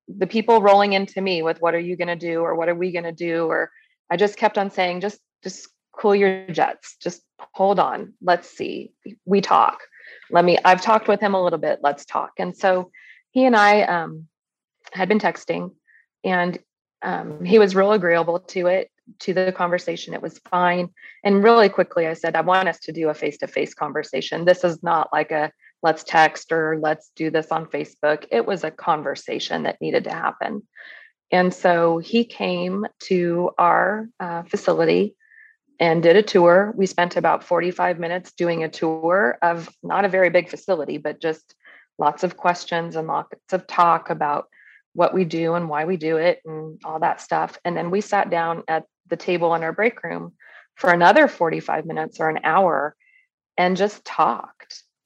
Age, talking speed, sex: 30-49, 190 wpm, female